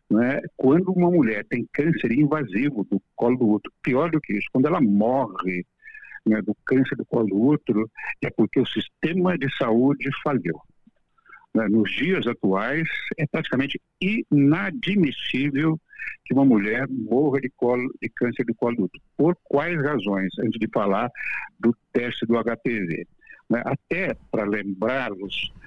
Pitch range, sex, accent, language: 110-180 Hz, male, Brazilian, Portuguese